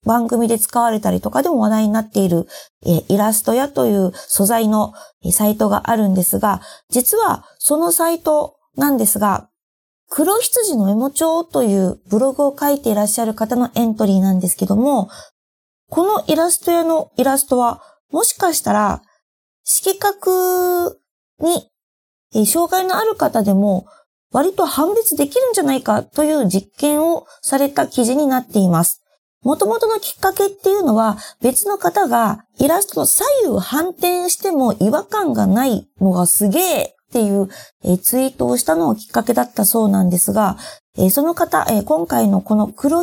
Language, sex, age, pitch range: Japanese, female, 20-39, 205-320 Hz